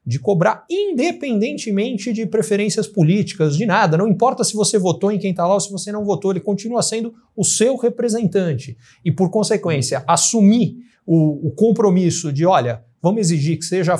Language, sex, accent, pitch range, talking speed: Portuguese, male, Brazilian, 165-230 Hz, 175 wpm